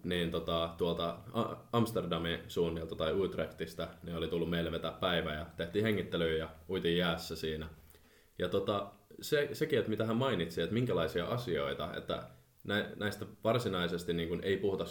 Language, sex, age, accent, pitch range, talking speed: Finnish, male, 20-39, native, 80-90 Hz, 145 wpm